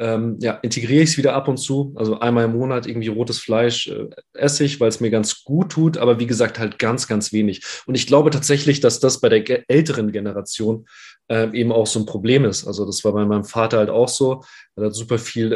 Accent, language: German, German